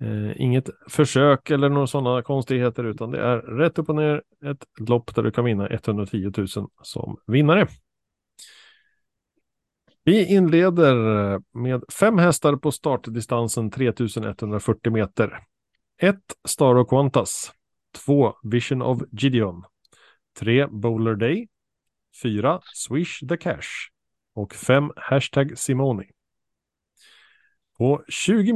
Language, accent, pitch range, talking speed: Swedish, Norwegian, 115-155 Hz, 105 wpm